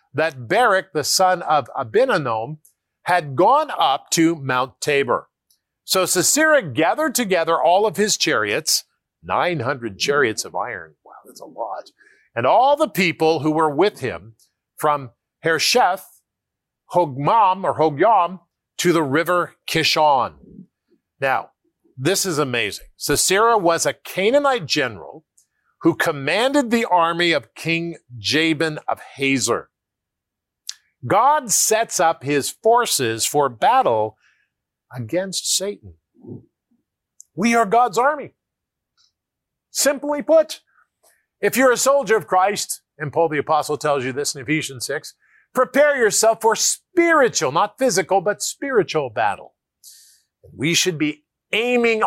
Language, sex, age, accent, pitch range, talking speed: English, male, 50-69, American, 145-225 Hz, 125 wpm